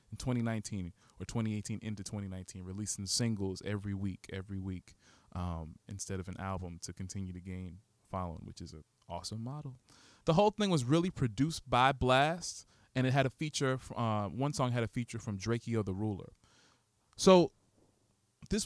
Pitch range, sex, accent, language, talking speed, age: 100-130 Hz, male, American, English, 165 wpm, 20-39